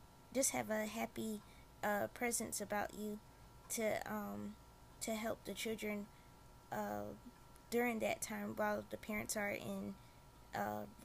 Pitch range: 135-225 Hz